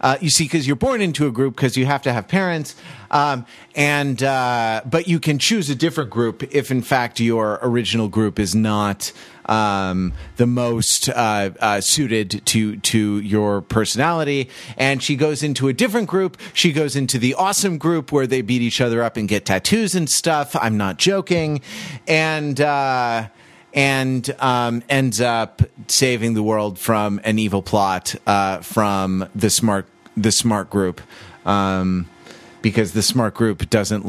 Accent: American